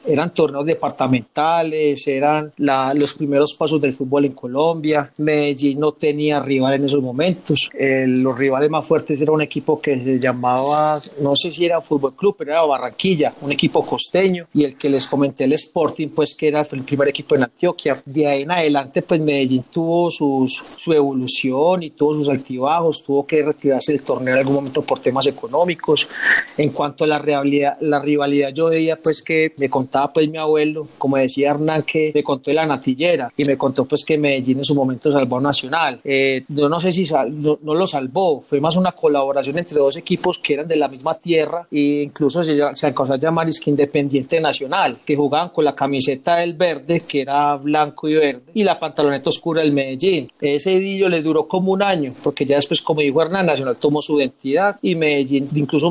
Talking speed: 205 wpm